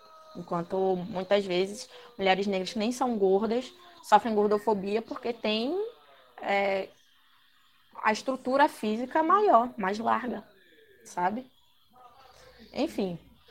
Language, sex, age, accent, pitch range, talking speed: Portuguese, female, 20-39, Brazilian, 200-255 Hz, 100 wpm